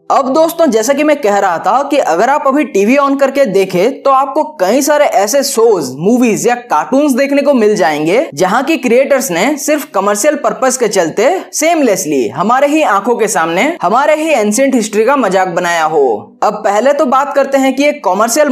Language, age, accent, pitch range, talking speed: Hindi, 20-39, native, 205-300 Hz, 200 wpm